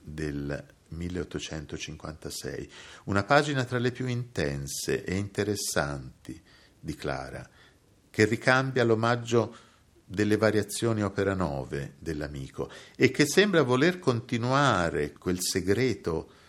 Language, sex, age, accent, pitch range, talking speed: Italian, male, 50-69, native, 75-110 Hz, 100 wpm